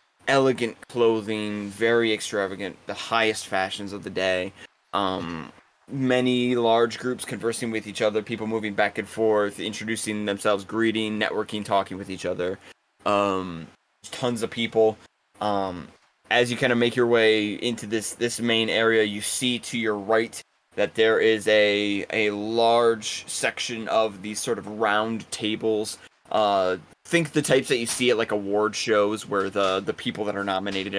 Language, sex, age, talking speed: English, male, 20-39, 165 wpm